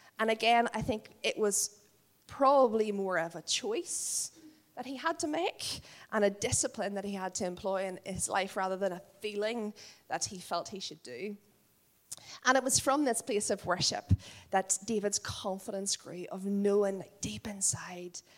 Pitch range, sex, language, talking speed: 190-270 Hz, female, English, 175 wpm